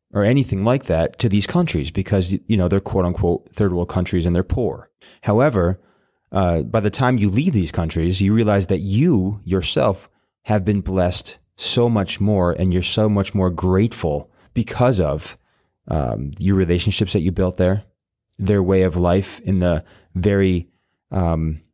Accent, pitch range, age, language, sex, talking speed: American, 90-110 Hz, 30-49, English, male, 170 wpm